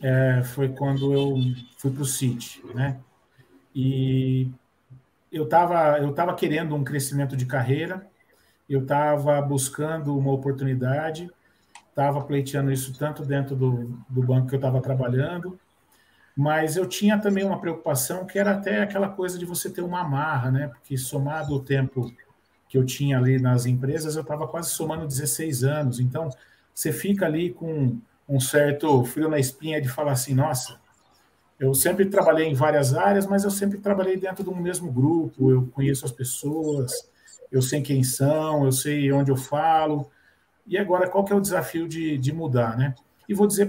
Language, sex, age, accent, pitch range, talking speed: Portuguese, male, 40-59, Brazilian, 130-170 Hz, 170 wpm